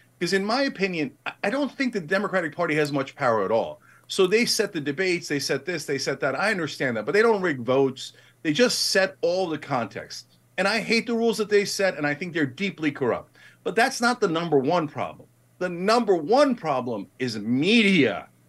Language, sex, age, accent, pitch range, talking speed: English, male, 40-59, American, 150-225 Hz, 220 wpm